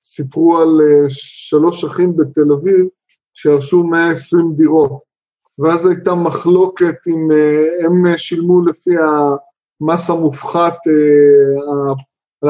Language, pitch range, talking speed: Hebrew, 150-185 Hz, 90 wpm